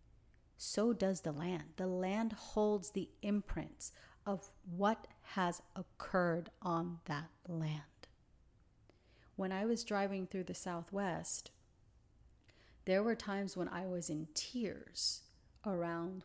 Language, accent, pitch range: English, American, 165-200 Hz